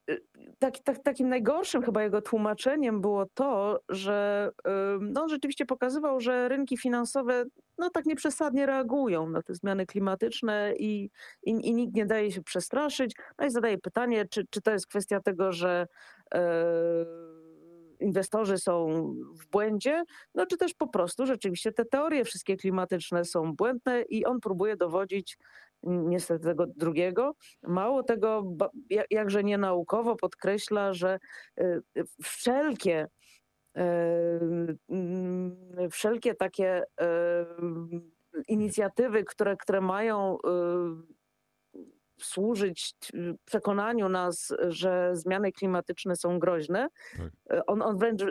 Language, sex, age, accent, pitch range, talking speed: Polish, female, 40-59, native, 180-235 Hz, 115 wpm